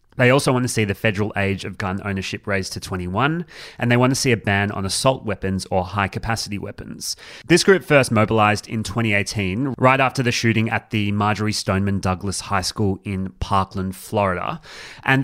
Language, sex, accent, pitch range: English, male, Australian, 100-120 Hz